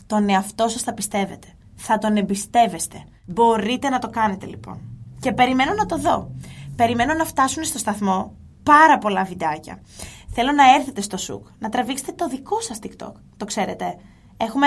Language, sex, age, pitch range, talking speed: Greek, female, 20-39, 190-250 Hz, 165 wpm